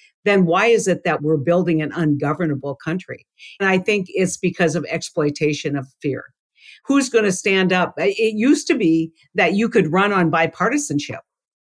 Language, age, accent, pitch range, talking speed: English, 60-79, American, 155-195 Hz, 175 wpm